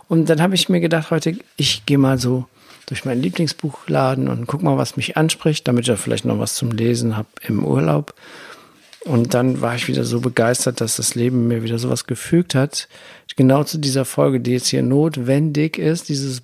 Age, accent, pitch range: 50-69, German, 115-155 Hz